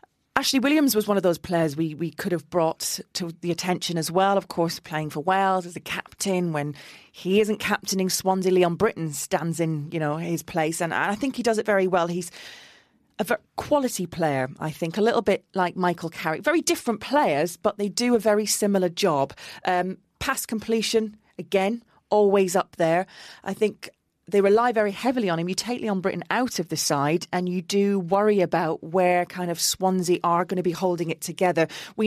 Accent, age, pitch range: British, 30-49, 170-205 Hz